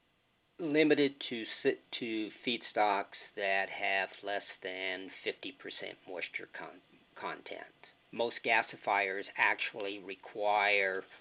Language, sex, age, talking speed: English, male, 50-69, 85 wpm